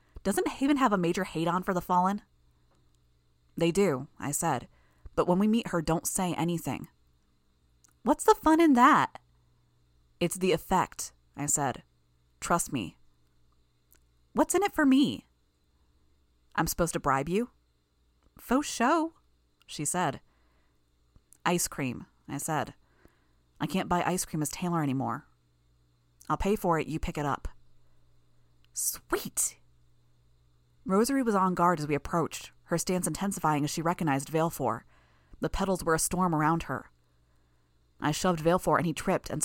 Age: 30-49